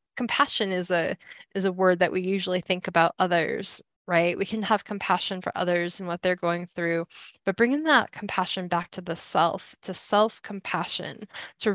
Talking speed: 185 wpm